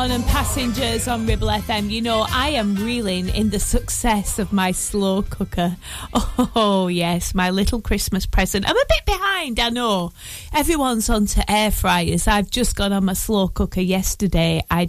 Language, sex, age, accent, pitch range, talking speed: English, female, 30-49, British, 185-235 Hz, 175 wpm